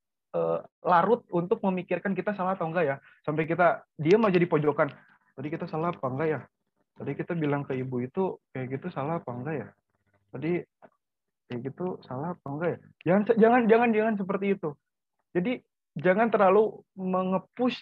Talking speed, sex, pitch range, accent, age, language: 165 wpm, male, 135-190 Hz, native, 30-49, Indonesian